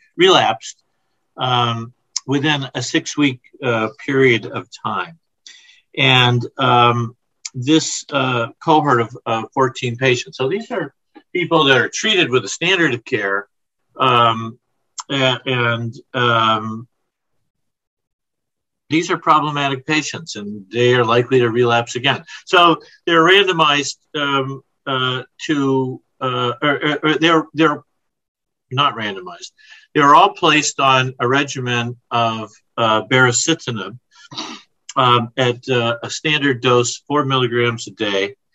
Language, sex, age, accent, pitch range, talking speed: English, male, 50-69, American, 120-155 Hz, 120 wpm